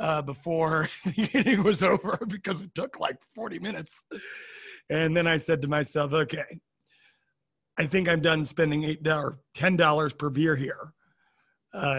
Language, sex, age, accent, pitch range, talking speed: English, male, 40-59, American, 155-190 Hz, 155 wpm